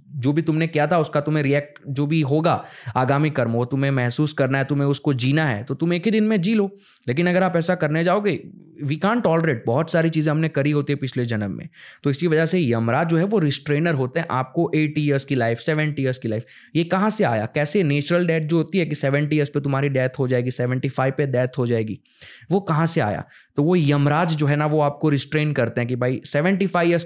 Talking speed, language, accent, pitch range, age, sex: 245 wpm, Hindi, native, 130-165 Hz, 20-39, male